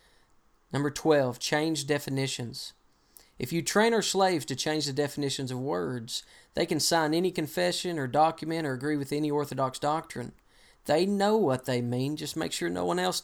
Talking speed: 175 wpm